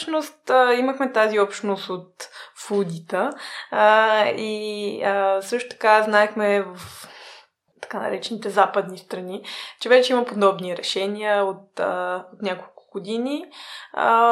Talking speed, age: 115 wpm, 20-39